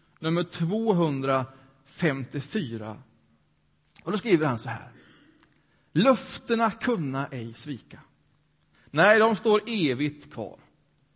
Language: Swedish